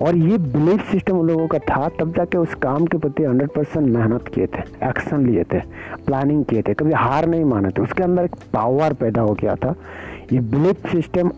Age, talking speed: 50-69, 215 wpm